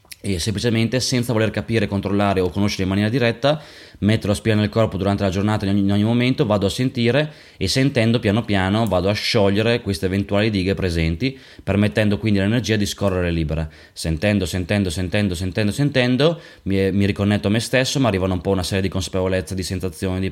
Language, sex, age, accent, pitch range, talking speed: Italian, male, 20-39, native, 95-115 Hz, 195 wpm